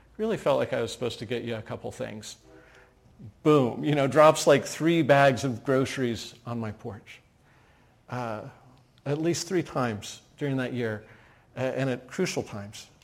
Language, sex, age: English, male, 50-69